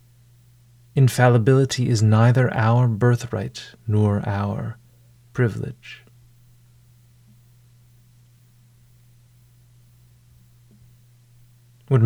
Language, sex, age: English, male, 30-49